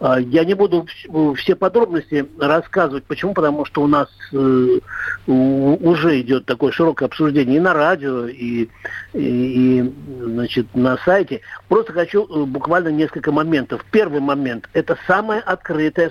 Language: Russian